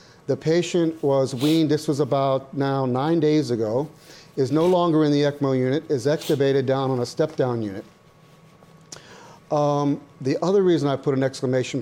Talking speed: 170 wpm